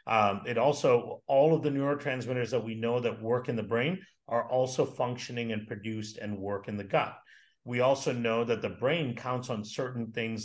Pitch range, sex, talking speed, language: 110-135 Hz, male, 200 wpm, English